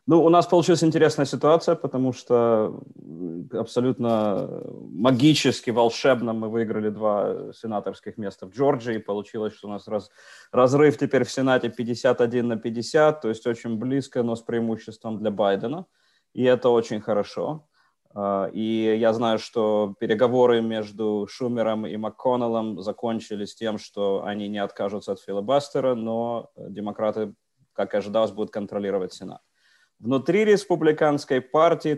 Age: 30-49